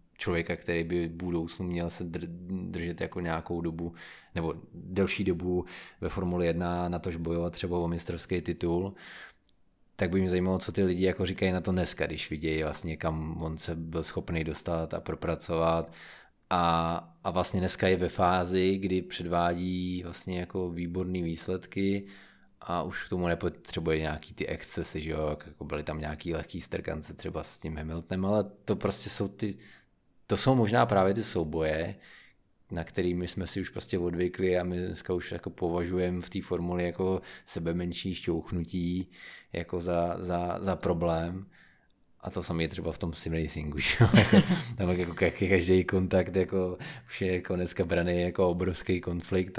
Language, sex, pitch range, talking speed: Czech, male, 85-95 Hz, 165 wpm